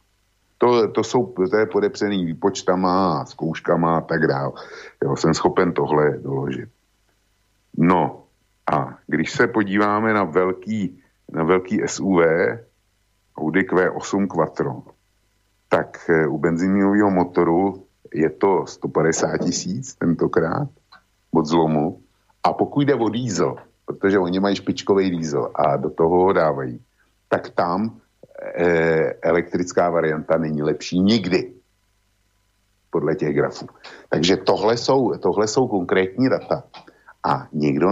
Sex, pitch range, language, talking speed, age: male, 80-100 Hz, Slovak, 115 wpm, 50-69